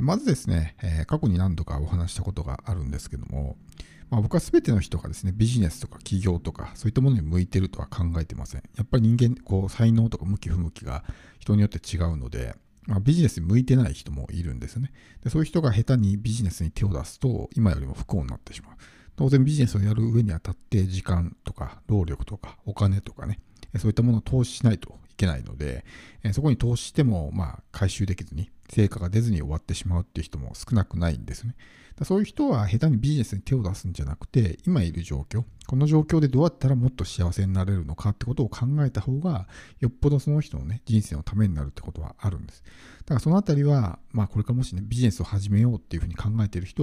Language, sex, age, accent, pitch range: Japanese, male, 50-69, native, 85-120 Hz